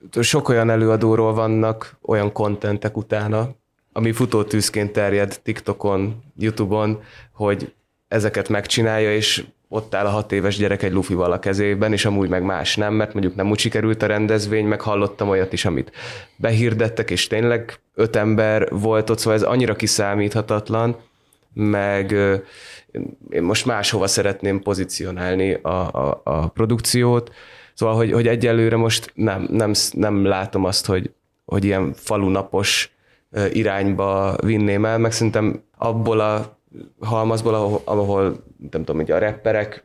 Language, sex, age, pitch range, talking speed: Hungarian, male, 20-39, 100-110 Hz, 145 wpm